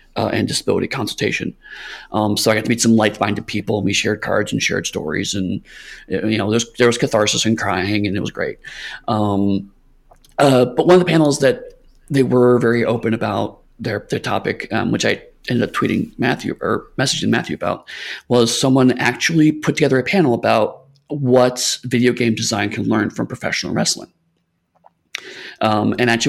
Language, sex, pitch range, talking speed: English, male, 110-150 Hz, 185 wpm